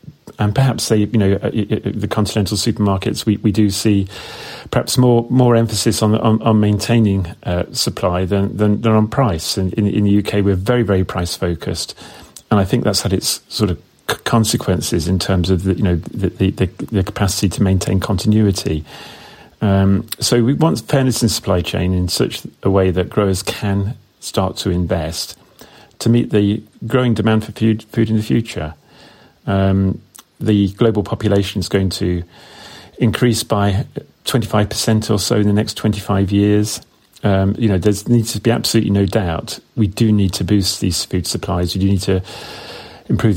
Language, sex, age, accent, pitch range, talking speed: English, male, 40-59, British, 95-110 Hz, 180 wpm